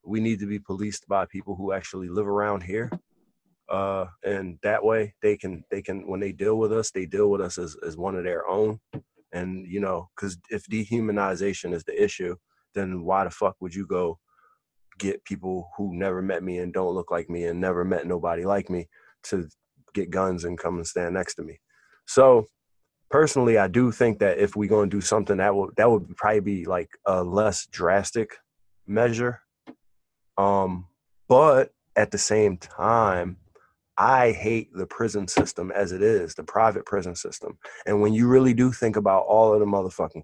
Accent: American